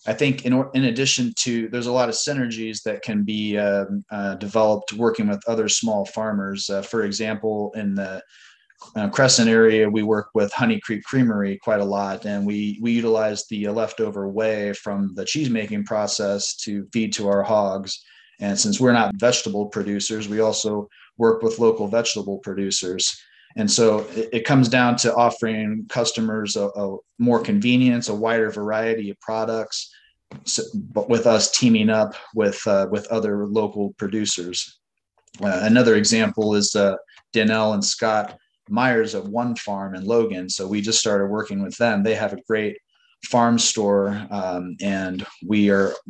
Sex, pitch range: male, 100-115 Hz